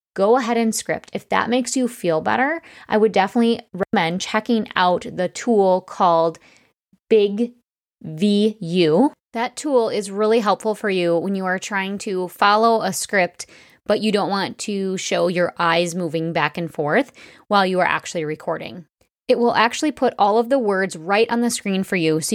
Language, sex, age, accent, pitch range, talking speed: English, female, 20-39, American, 175-230 Hz, 185 wpm